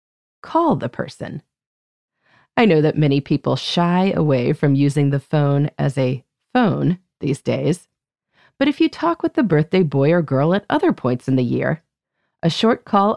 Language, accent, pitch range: English, American, 140-225 Hz